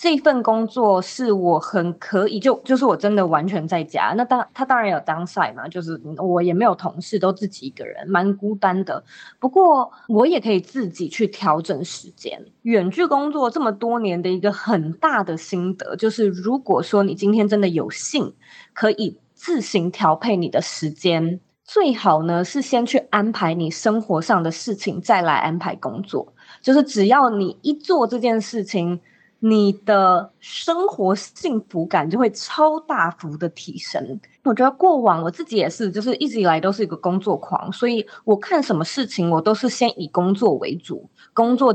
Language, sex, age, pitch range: Chinese, female, 20-39, 180-240 Hz